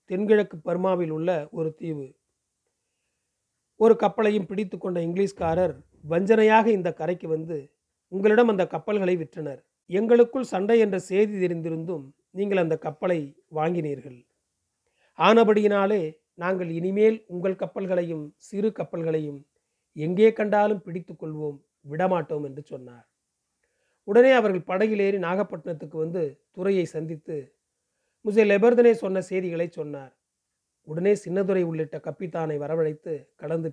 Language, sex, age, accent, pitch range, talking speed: Tamil, male, 40-59, native, 155-200 Hz, 105 wpm